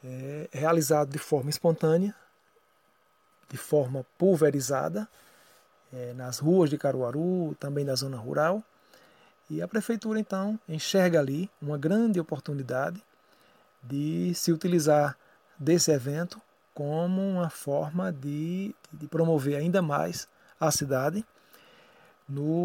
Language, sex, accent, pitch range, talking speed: Portuguese, male, Brazilian, 145-175 Hz, 110 wpm